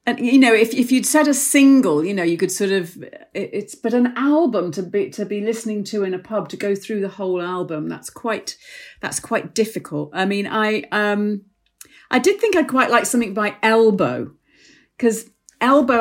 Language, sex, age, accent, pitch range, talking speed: English, female, 40-59, British, 175-230 Hz, 205 wpm